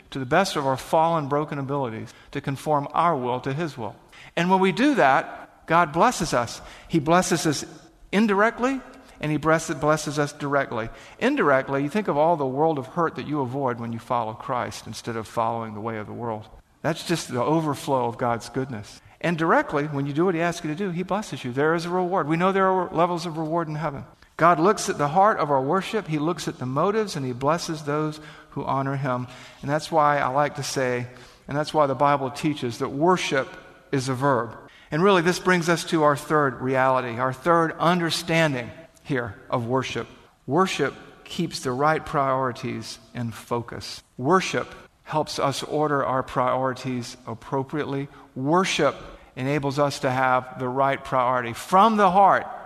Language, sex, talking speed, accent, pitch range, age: English, male, 190 wpm, American, 130-165 Hz, 50-69